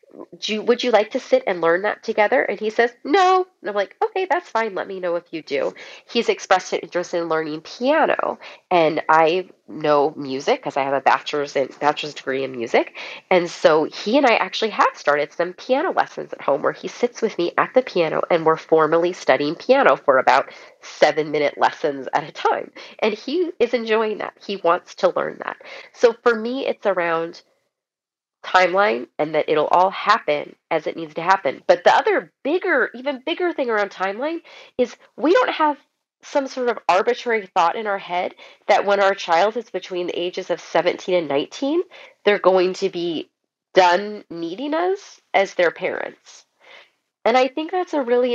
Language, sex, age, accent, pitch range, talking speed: English, female, 30-49, American, 175-265 Hz, 190 wpm